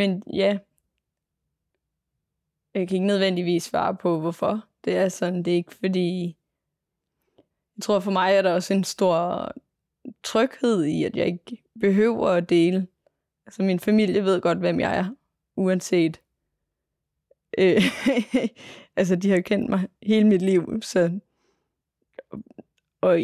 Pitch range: 175-200 Hz